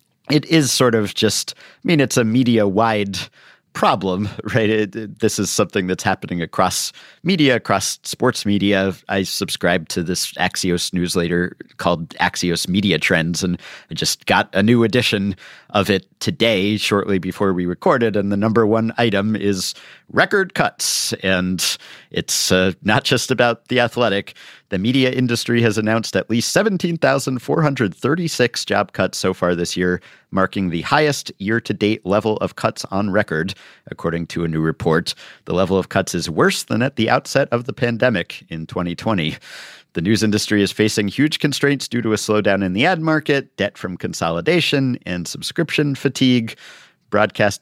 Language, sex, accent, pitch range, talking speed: English, male, American, 95-125 Hz, 165 wpm